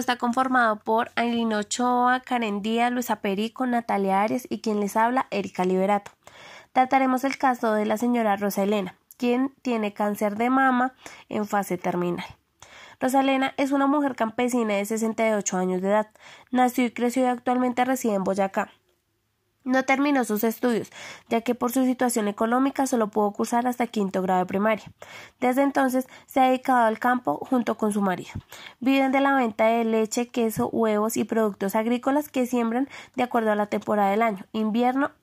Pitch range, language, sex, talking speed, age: 210-255 Hz, Italian, female, 175 wpm, 20-39